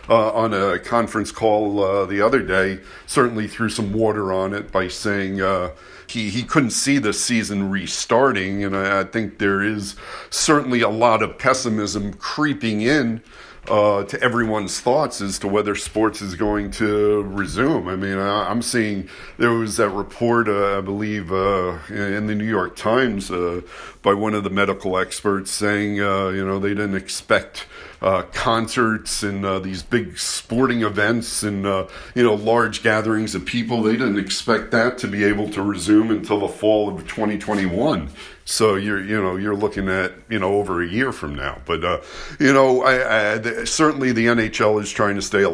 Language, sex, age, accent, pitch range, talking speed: English, male, 50-69, American, 100-110 Hz, 185 wpm